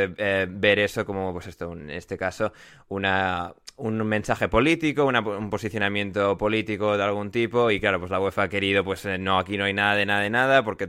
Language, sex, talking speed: Spanish, male, 225 wpm